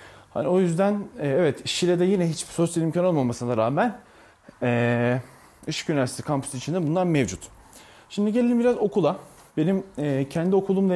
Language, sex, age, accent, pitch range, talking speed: Turkish, male, 30-49, native, 125-175 Hz, 140 wpm